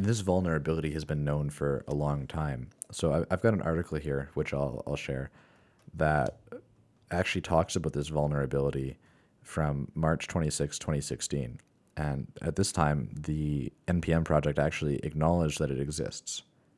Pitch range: 70-85 Hz